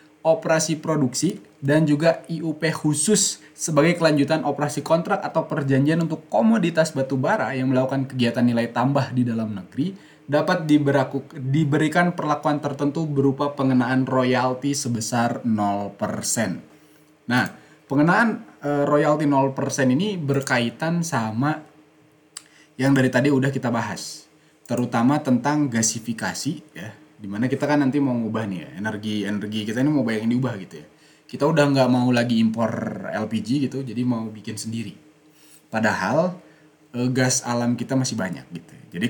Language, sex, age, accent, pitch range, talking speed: Indonesian, male, 20-39, native, 115-150 Hz, 135 wpm